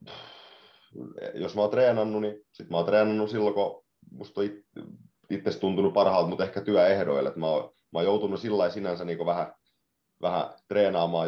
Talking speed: 160 wpm